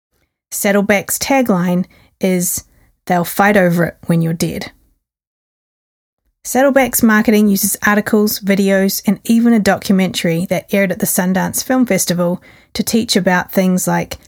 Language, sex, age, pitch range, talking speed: English, female, 30-49, 180-210 Hz, 130 wpm